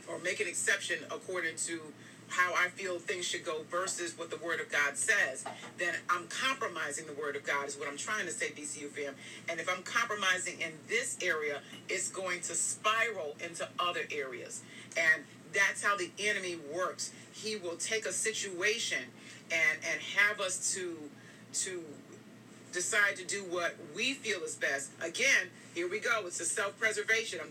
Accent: American